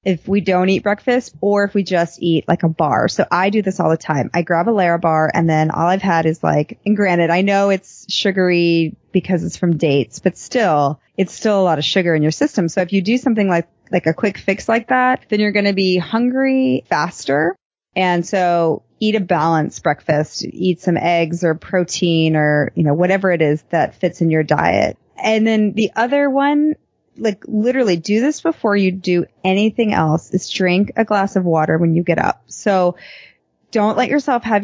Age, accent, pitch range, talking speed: 30-49, American, 160-200 Hz, 215 wpm